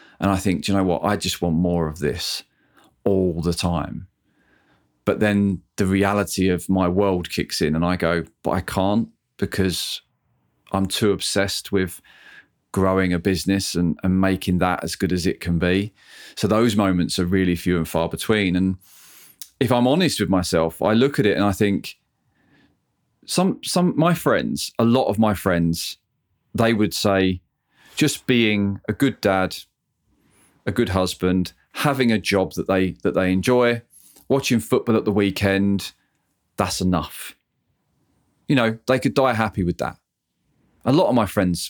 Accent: British